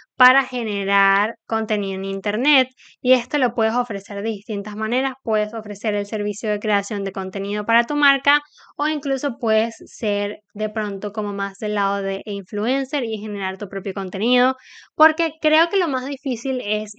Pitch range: 210-260 Hz